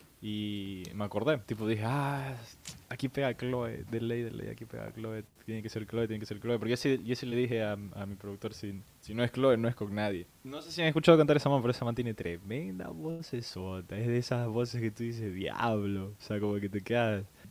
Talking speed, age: 245 wpm, 20-39